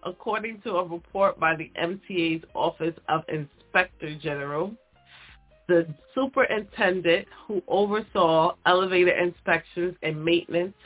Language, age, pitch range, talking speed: English, 30-49, 160-205 Hz, 105 wpm